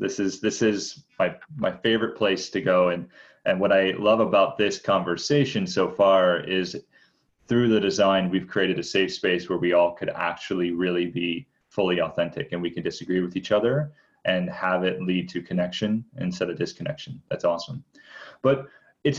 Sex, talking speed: male, 180 wpm